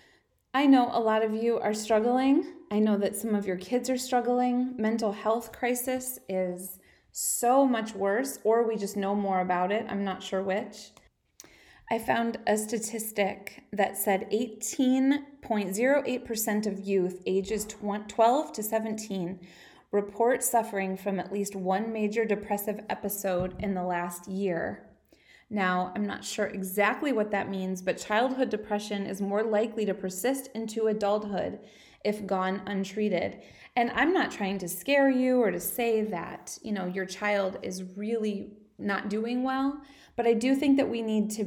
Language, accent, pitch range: English, American, 190-230 Hz